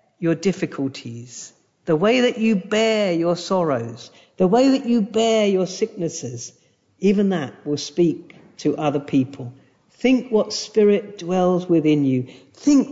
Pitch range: 140-205 Hz